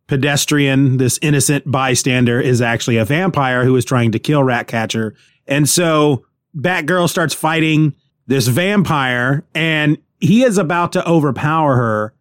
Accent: American